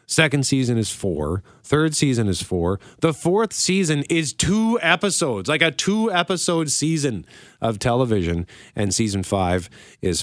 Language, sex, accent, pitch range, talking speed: English, male, American, 95-145 Hz, 140 wpm